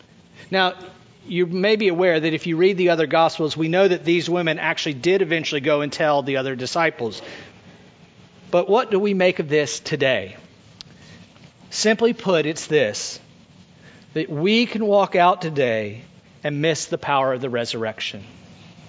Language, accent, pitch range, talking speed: English, American, 150-205 Hz, 160 wpm